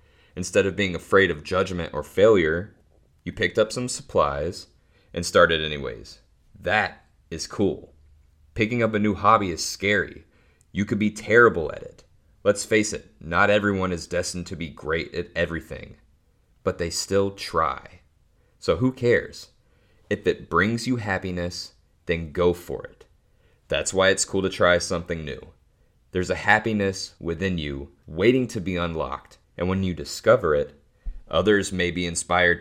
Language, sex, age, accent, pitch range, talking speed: English, male, 30-49, American, 85-105 Hz, 160 wpm